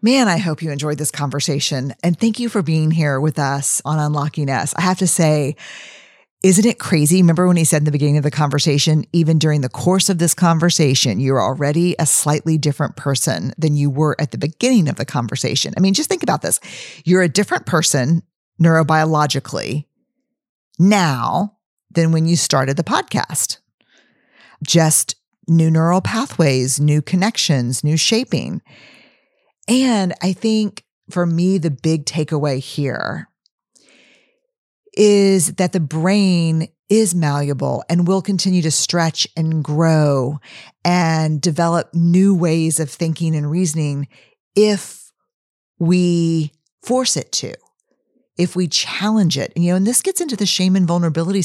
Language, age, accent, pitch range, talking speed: English, 40-59, American, 150-185 Hz, 155 wpm